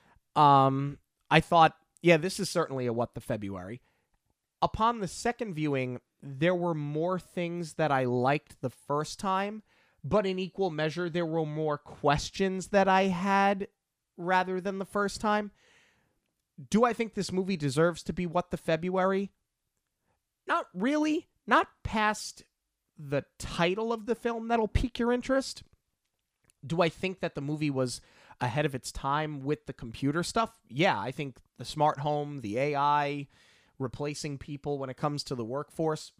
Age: 30-49